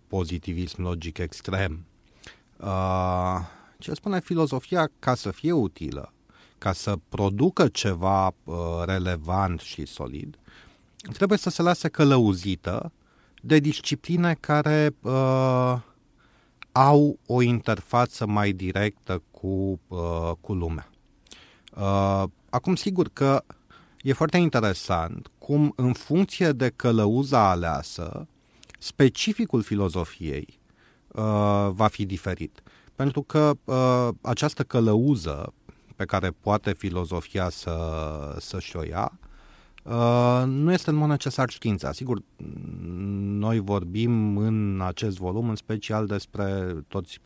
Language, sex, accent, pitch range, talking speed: Romanian, male, native, 95-130 Hz, 100 wpm